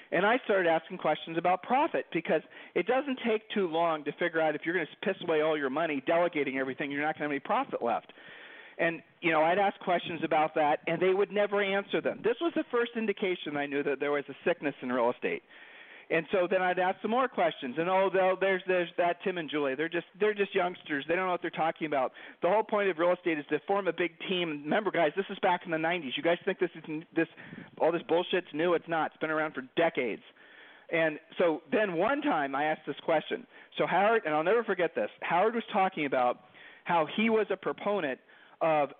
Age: 40-59